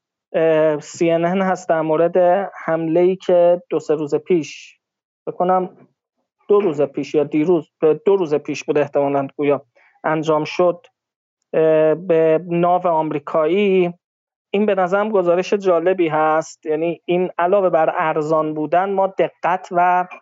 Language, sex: Persian, male